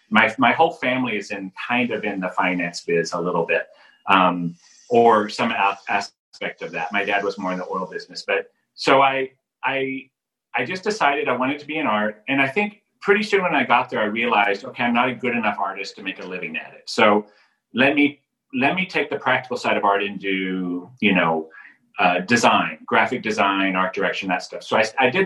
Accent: American